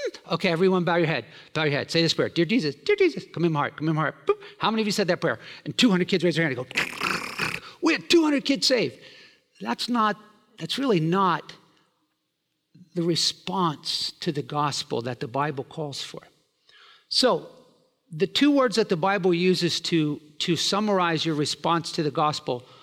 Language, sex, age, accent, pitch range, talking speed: English, male, 50-69, American, 160-205 Hz, 195 wpm